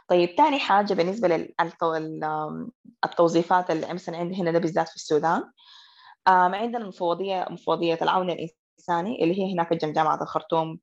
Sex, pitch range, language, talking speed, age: female, 160-195 Hz, Arabic, 120 wpm, 20-39